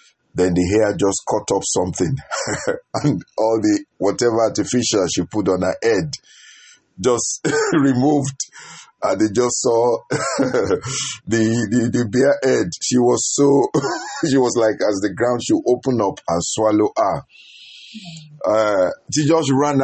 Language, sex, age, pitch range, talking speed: English, male, 50-69, 100-140 Hz, 140 wpm